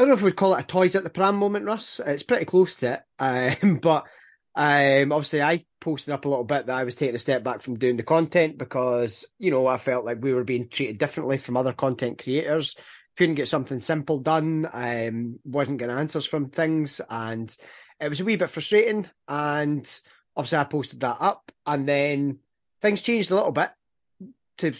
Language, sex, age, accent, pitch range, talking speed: English, male, 30-49, British, 130-160 Hz, 210 wpm